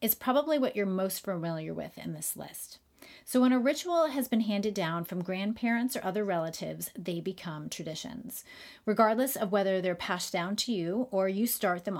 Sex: female